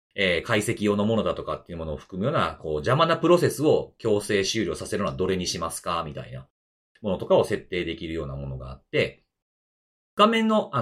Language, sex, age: Japanese, male, 40-59